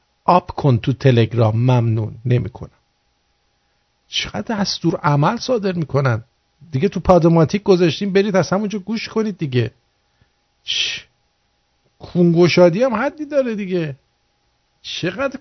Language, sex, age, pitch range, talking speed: English, male, 50-69, 130-195 Hz, 115 wpm